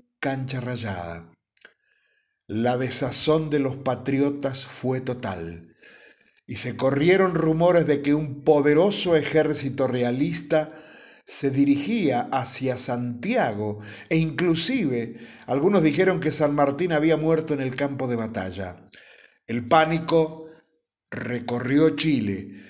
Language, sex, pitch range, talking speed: Spanish, male, 125-155 Hz, 110 wpm